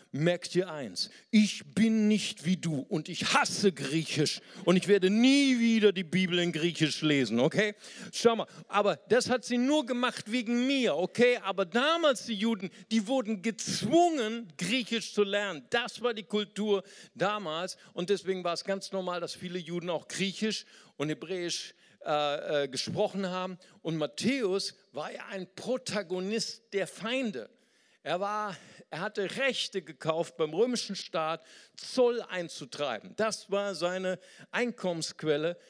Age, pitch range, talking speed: 50-69, 155-215 Hz, 150 wpm